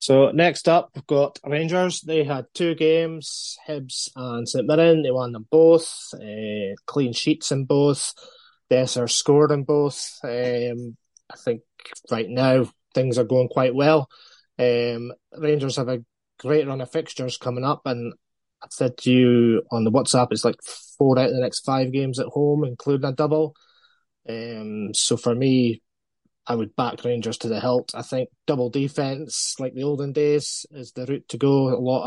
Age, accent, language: 20-39, British, English